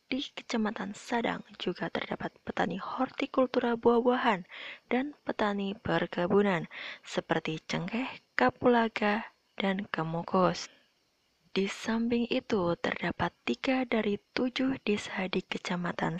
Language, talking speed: Indonesian, 95 wpm